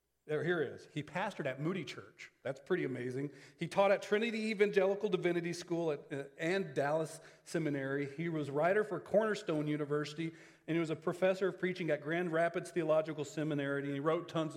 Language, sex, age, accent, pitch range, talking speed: English, male, 40-59, American, 130-170 Hz, 185 wpm